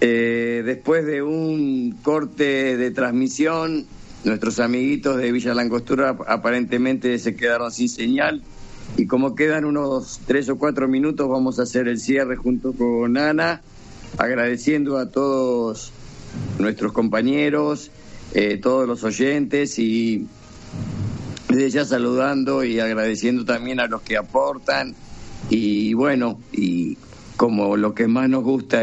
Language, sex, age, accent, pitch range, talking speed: Spanish, male, 50-69, Argentinian, 115-135 Hz, 130 wpm